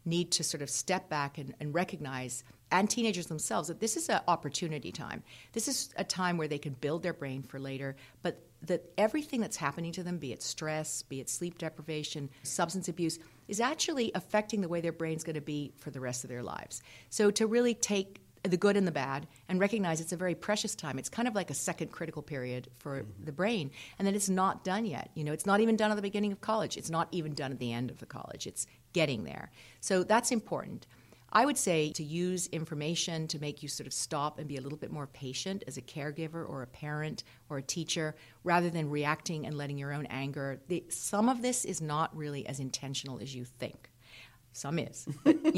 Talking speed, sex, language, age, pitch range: 230 wpm, female, English, 50-69, 140-185 Hz